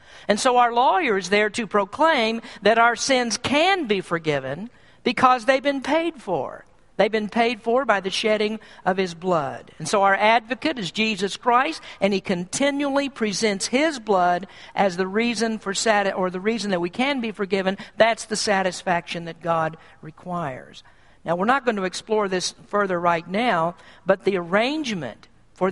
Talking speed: 175 wpm